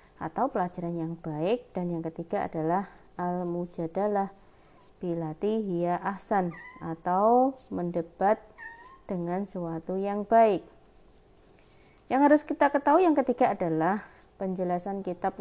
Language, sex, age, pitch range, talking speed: Indonesian, female, 30-49, 175-235 Hz, 105 wpm